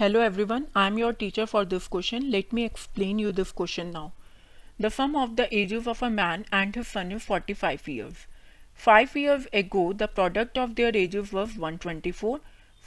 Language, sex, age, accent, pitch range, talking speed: Hindi, female, 40-59, native, 185-240 Hz, 185 wpm